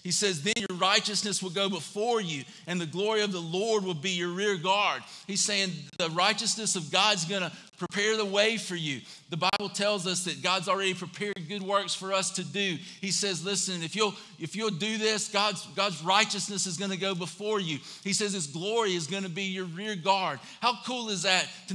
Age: 50-69